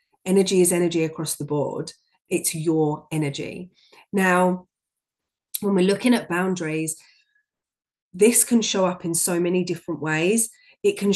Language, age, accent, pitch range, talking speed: English, 30-49, British, 165-195 Hz, 140 wpm